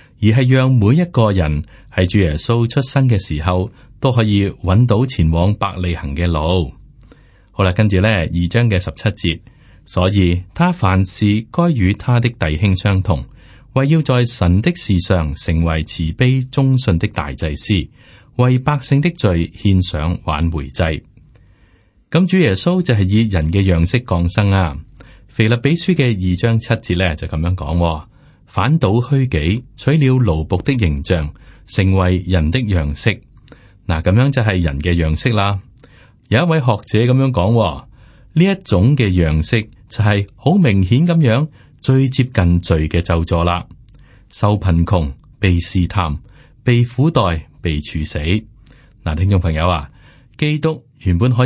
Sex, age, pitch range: male, 30-49, 85-125 Hz